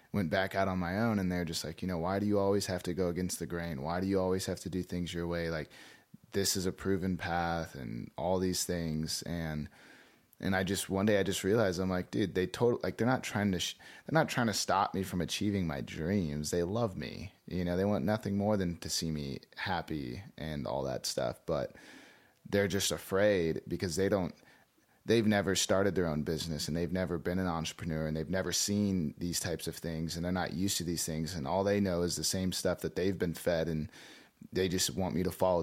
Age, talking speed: 30-49, 240 wpm